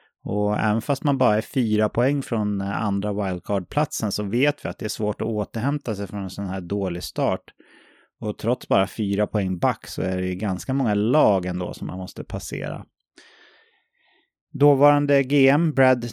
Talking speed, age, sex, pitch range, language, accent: 180 wpm, 30-49, male, 100-135 Hz, English, Swedish